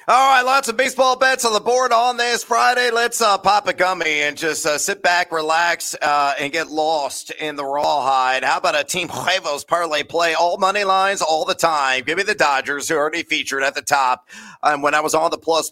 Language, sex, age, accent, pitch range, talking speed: English, male, 30-49, American, 150-190 Hz, 230 wpm